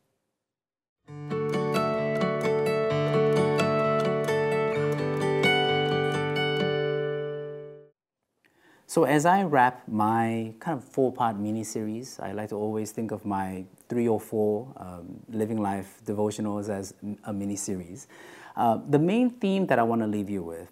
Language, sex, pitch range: English, male, 100-140 Hz